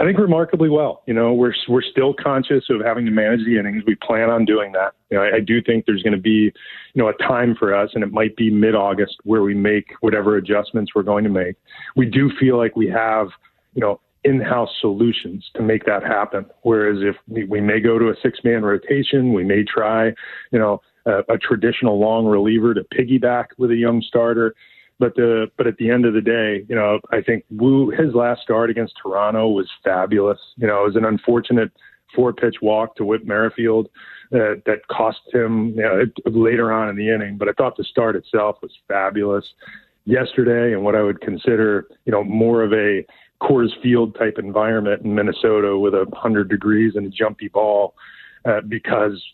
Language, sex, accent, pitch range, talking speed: English, male, American, 105-120 Hz, 205 wpm